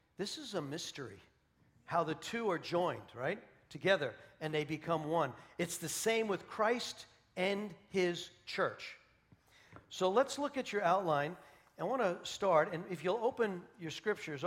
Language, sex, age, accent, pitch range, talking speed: English, male, 50-69, American, 135-180 Hz, 160 wpm